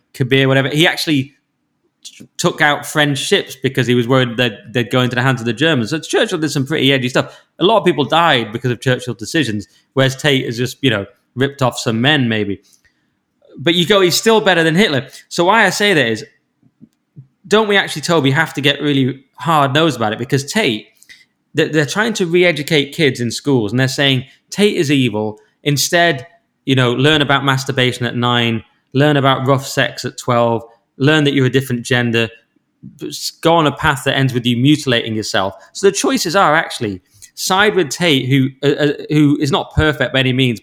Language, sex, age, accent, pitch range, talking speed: English, male, 20-39, British, 125-160 Hz, 200 wpm